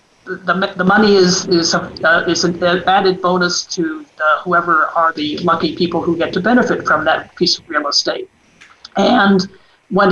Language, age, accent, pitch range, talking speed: English, 50-69, American, 170-190 Hz, 180 wpm